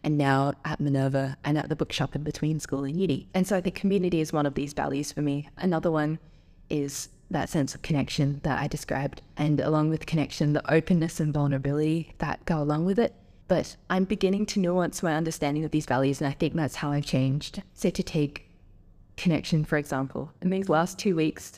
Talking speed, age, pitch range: 210 wpm, 10-29, 145-175 Hz